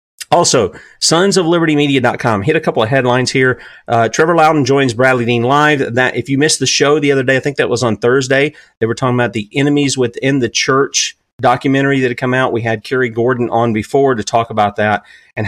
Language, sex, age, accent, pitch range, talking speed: English, male, 40-59, American, 120-155 Hz, 215 wpm